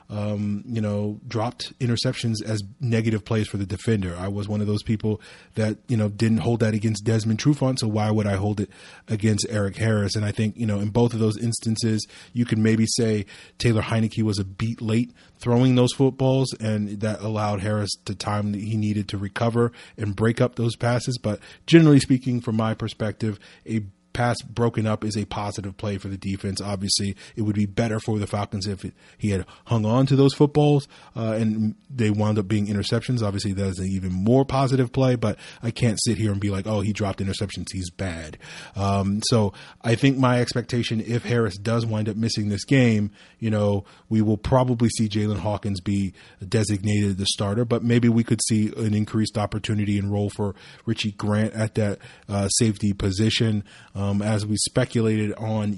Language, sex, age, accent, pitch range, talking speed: English, male, 30-49, American, 105-115 Hz, 200 wpm